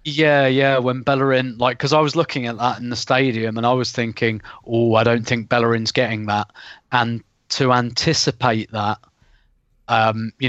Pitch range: 115-135 Hz